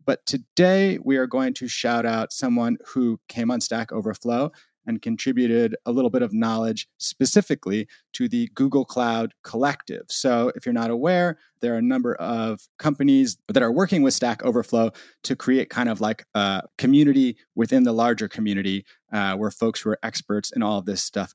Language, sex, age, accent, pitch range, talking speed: English, male, 30-49, American, 110-170 Hz, 185 wpm